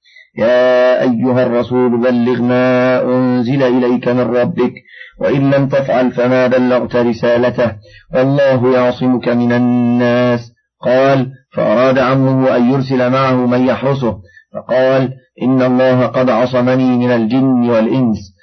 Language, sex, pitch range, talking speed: Arabic, male, 120-140 Hz, 115 wpm